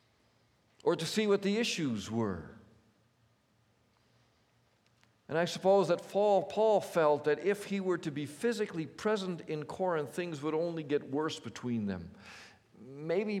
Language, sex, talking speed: English, male, 140 wpm